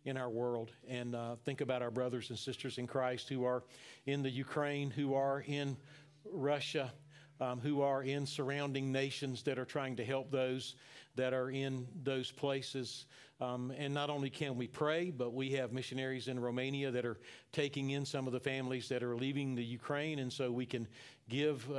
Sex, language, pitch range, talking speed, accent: male, English, 130-150 Hz, 195 wpm, American